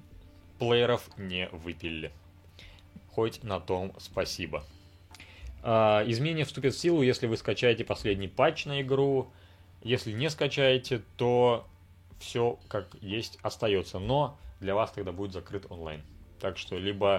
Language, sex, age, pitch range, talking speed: Russian, male, 30-49, 90-125 Hz, 125 wpm